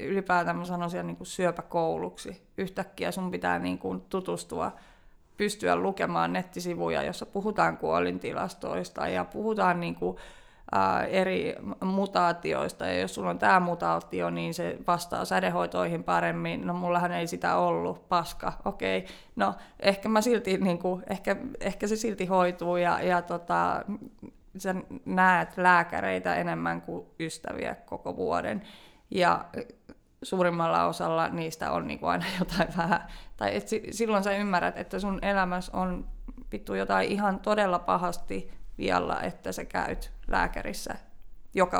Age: 20-39